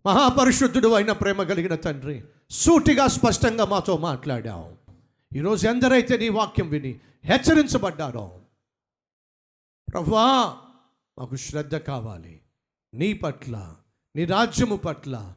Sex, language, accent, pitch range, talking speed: male, Telugu, native, 135-205 Hz, 95 wpm